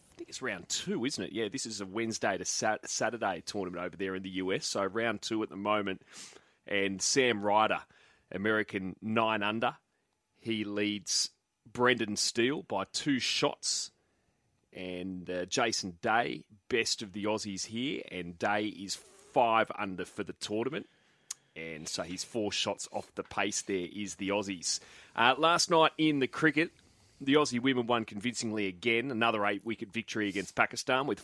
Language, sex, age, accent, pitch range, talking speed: English, male, 30-49, Australian, 95-120 Hz, 165 wpm